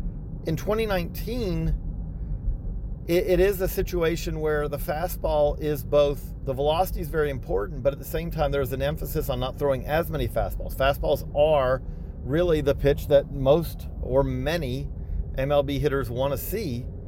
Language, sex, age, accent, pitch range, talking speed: English, male, 40-59, American, 115-145 Hz, 160 wpm